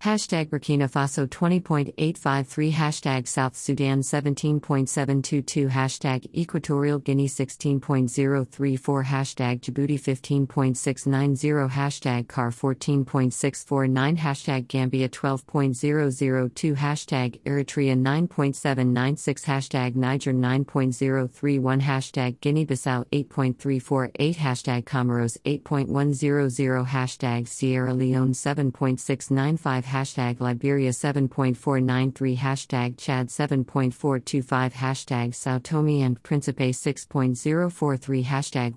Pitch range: 130-145 Hz